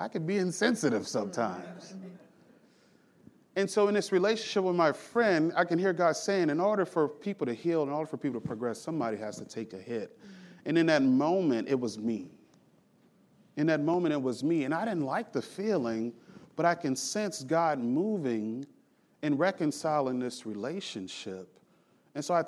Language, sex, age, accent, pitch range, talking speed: English, male, 30-49, American, 125-185 Hz, 180 wpm